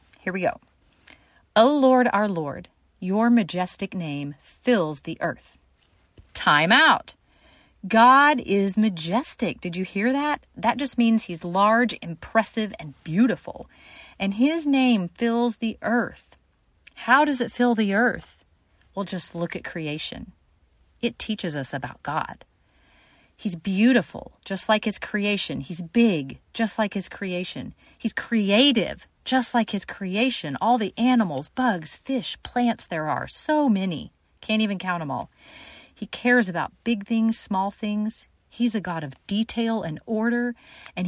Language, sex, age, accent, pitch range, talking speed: English, female, 40-59, American, 175-235 Hz, 145 wpm